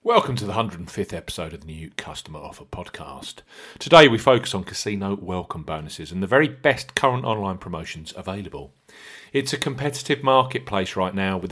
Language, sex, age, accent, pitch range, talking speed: English, male, 40-59, British, 90-135 Hz, 170 wpm